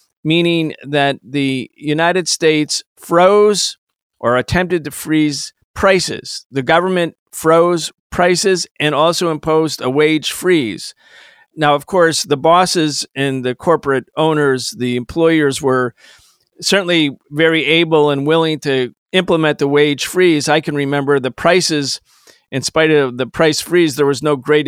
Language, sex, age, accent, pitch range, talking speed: English, male, 40-59, American, 135-165 Hz, 140 wpm